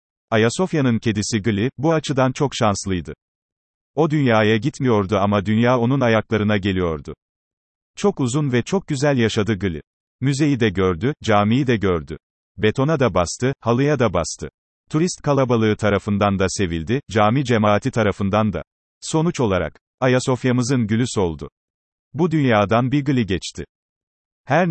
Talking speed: 130 wpm